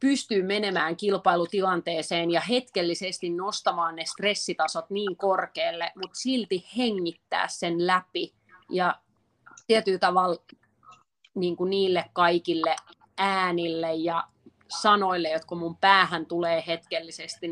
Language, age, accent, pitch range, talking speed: Finnish, 30-49, native, 165-195 Hz, 105 wpm